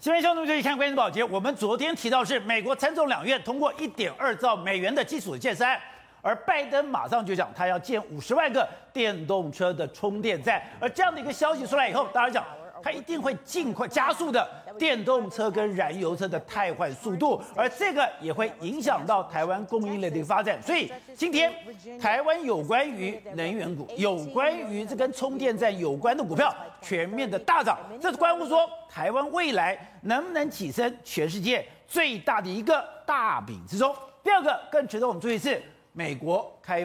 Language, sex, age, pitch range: Chinese, male, 50-69, 200-290 Hz